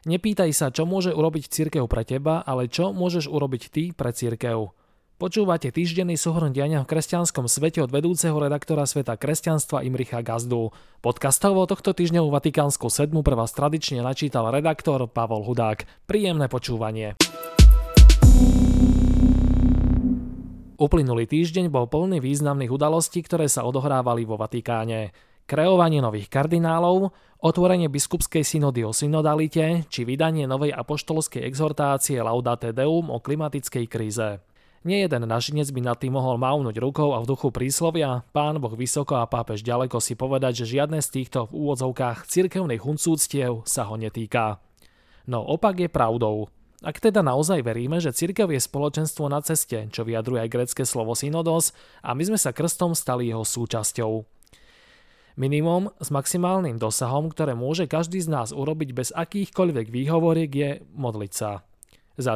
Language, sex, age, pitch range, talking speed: Slovak, male, 20-39, 120-160 Hz, 140 wpm